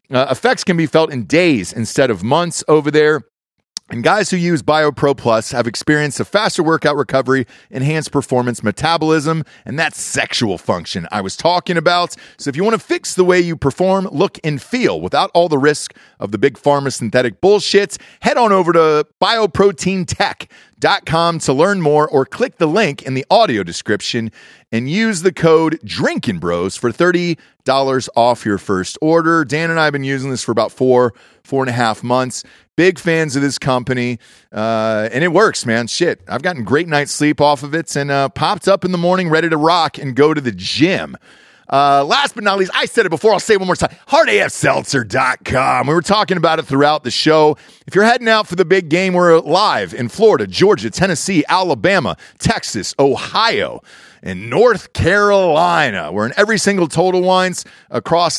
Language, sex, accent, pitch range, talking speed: English, male, American, 135-180 Hz, 190 wpm